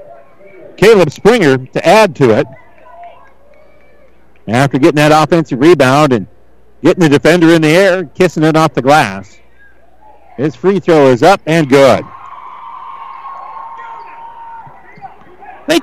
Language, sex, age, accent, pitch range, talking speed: English, male, 50-69, American, 140-185 Hz, 120 wpm